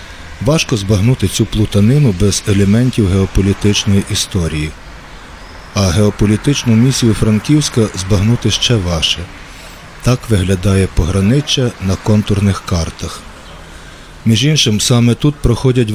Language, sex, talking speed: Ukrainian, male, 100 wpm